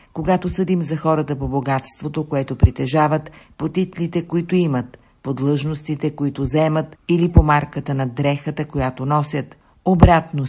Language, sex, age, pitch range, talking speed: Bulgarian, female, 50-69, 140-160 Hz, 130 wpm